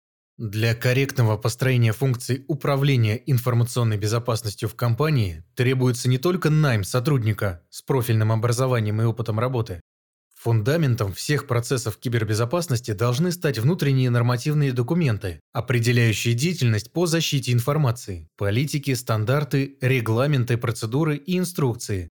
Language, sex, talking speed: Russian, male, 110 wpm